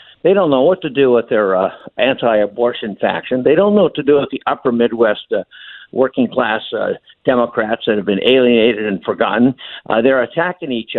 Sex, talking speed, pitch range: male, 195 wpm, 115-150 Hz